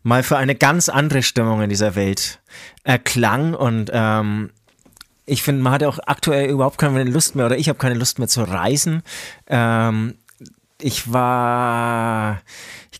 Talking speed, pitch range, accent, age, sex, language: 160 wpm, 110-135 Hz, German, 30-49, male, German